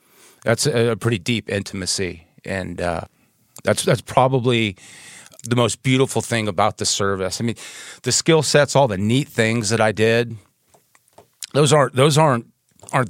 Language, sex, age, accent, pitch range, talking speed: English, male, 30-49, American, 95-120 Hz, 155 wpm